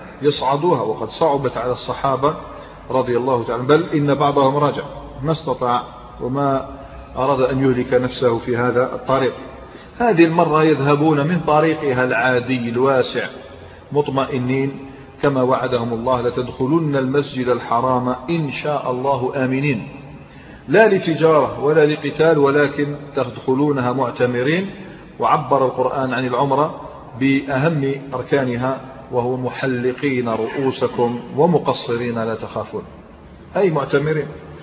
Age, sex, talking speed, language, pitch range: 40-59, male, 105 wpm, Arabic, 125-155 Hz